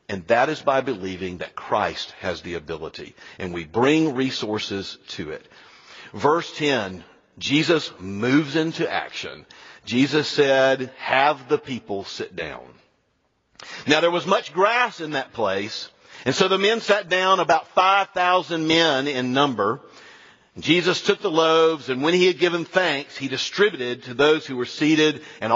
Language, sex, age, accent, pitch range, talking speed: English, male, 50-69, American, 150-210 Hz, 155 wpm